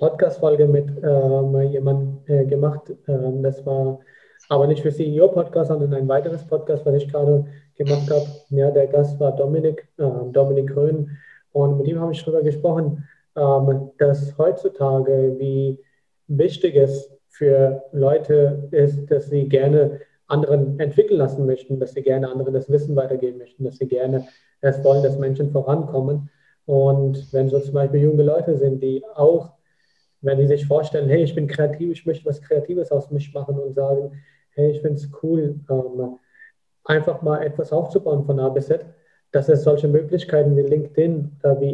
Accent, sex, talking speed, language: German, male, 170 wpm, German